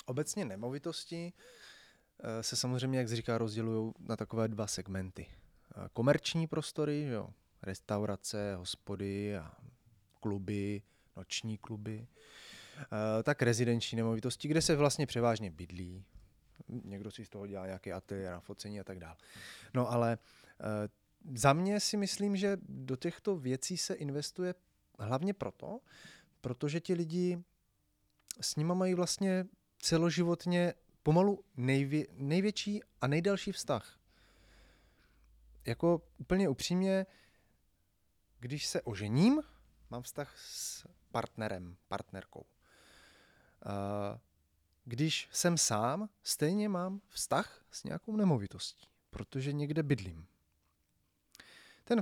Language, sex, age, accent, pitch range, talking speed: Czech, male, 20-39, native, 105-170 Hz, 105 wpm